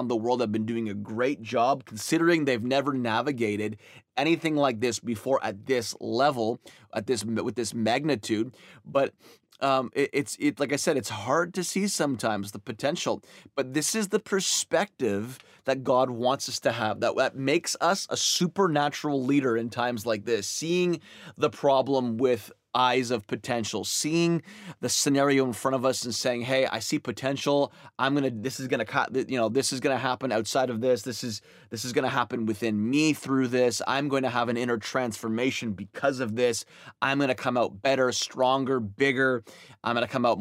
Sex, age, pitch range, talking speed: male, 20-39, 115-140 Hz, 195 wpm